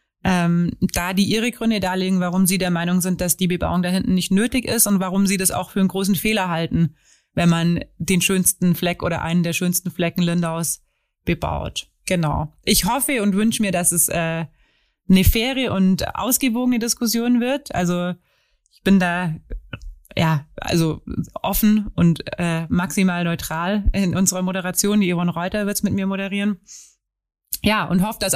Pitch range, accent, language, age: 175-200 Hz, German, German, 20-39